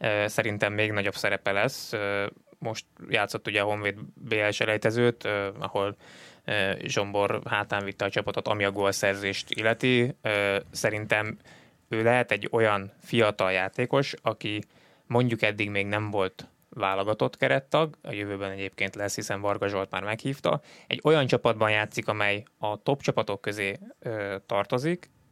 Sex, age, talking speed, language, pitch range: male, 20-39, 135 wpm, Hungarian, 100-120 Hz